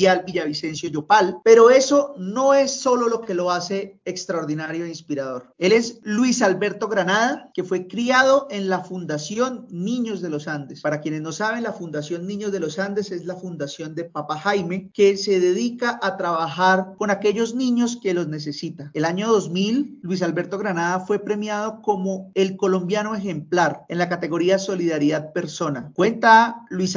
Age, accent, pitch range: 40-59, Colombian, 160-205 Hz